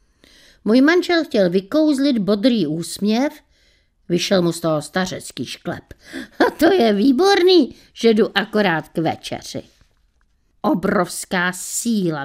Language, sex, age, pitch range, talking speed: Czech, female, 50-69, 180-225 Hz, 115 wpm